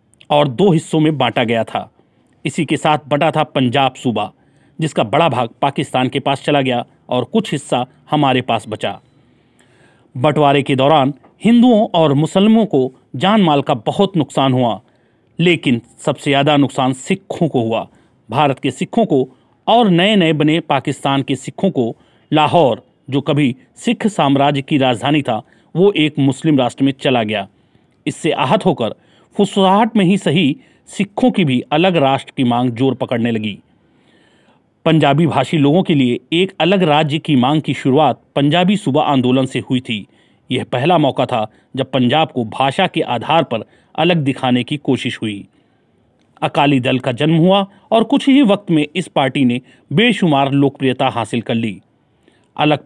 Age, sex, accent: 40-59, male, native